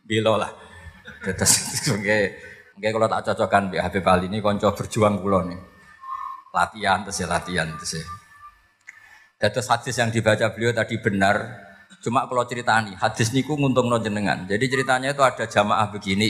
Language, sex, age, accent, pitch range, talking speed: Indonesian, male, 20-39, native, 105-165 Hz, 155 wpm